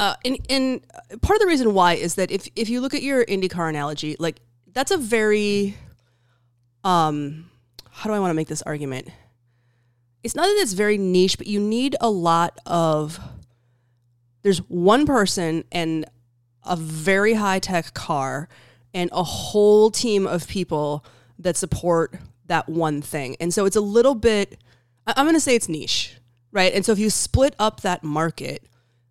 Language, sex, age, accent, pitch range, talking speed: English, female, 20-39, American, 130-195 Hz, 175 wpm